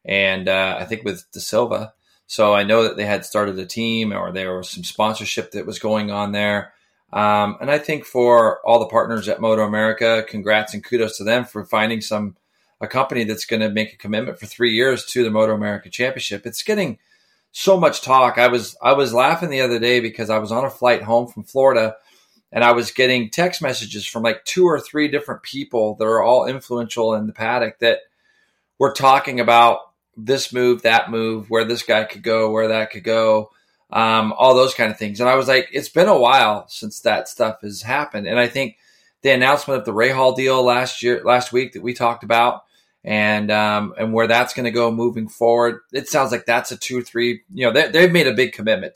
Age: 30-49